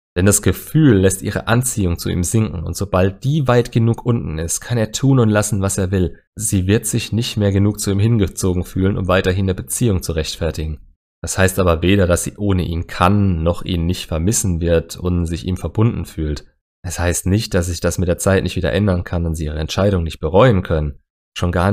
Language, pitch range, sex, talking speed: German, 85-105 Hz, male, 225 wpm